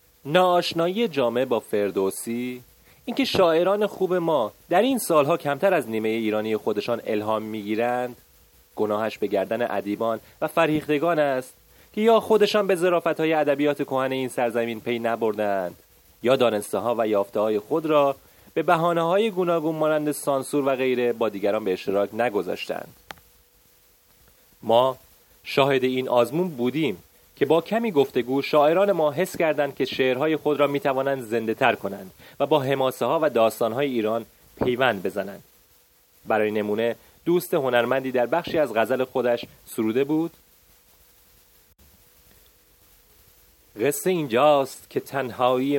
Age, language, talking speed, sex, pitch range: 30-49, Persian, 135 wpm, male, 110-155 Hz